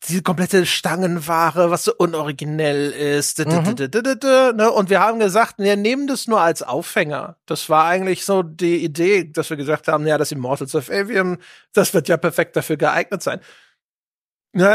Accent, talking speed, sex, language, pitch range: German, 165 wpm, male, German, 175-240 Hz